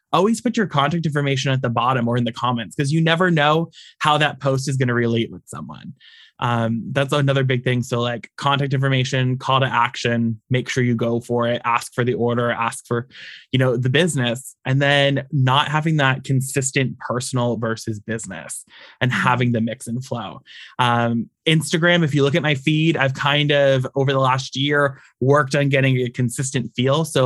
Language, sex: English, male